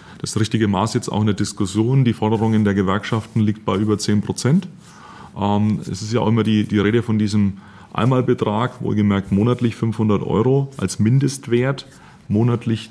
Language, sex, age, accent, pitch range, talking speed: German, male, 30-49, German, 110-135 Hz, 170 wpm